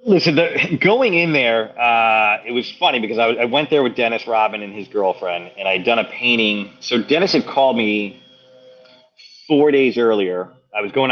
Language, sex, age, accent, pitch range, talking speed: English, male, 30-49, American, 100-130 Hz, 195 wpm